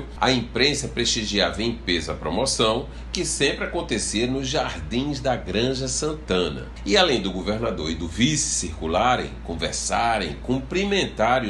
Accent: Brazilian